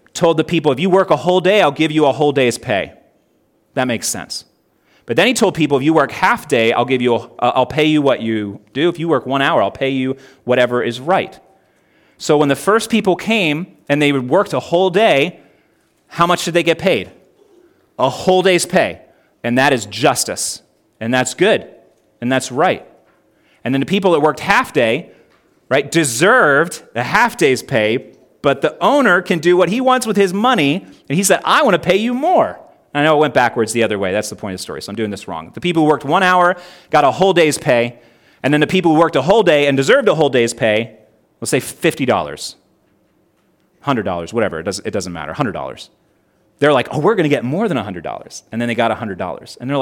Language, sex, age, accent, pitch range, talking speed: English, male, 30-49, American, 125-185 Hz, 230 wpm